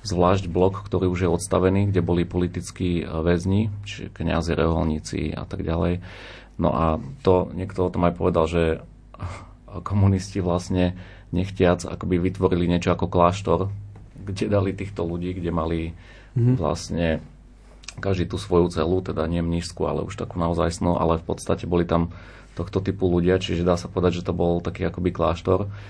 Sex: male